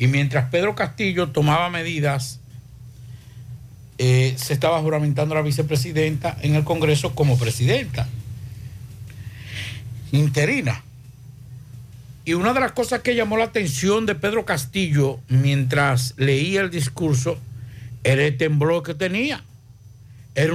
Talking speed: 120 wpm